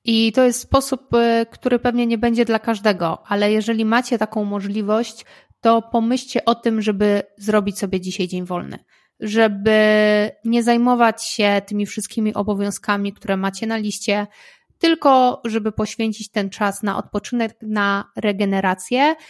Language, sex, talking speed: Polish, female, 140 wpm